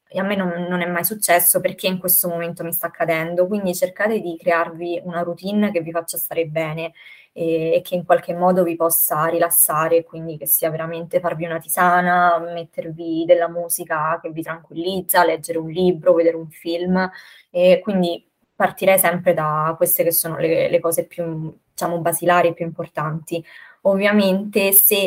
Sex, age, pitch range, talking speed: female, 20-39, 165-180 Hz, 170 wpm